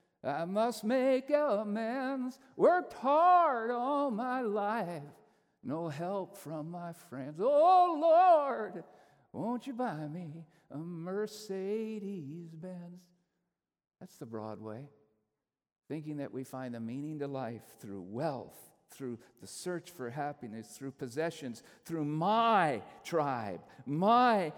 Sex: male